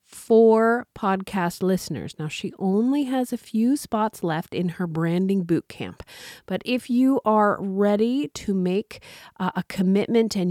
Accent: American